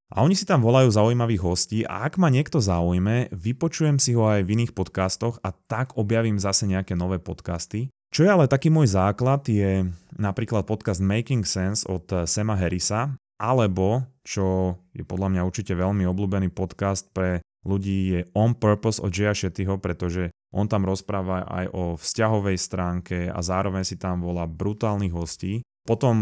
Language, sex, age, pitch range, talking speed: Slovak, male, 20-39, 90-110 Hz, 165 wpm